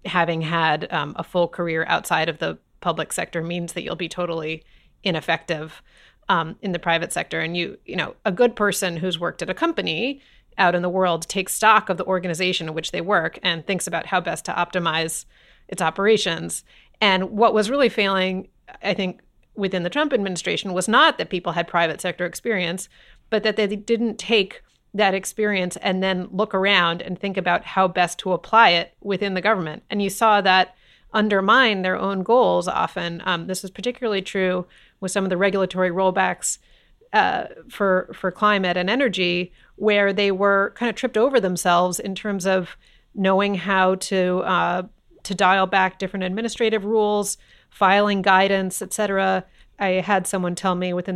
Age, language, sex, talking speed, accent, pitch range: 30-49, English, female, 180 wpm, American, 180-205 Hz